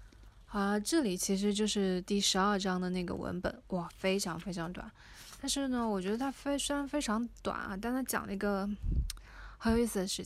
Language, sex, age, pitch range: Chinese, female, 20-39, 195-230 Hz